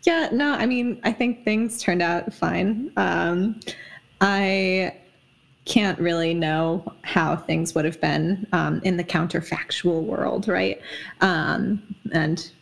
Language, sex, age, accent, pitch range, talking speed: English, female, 20-39, American, 165-200 Hz, 135 wpm